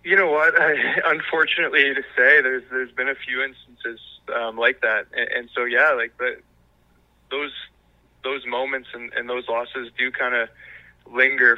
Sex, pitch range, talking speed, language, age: male, 115-130 Hz, 170 wpm, English, 20-39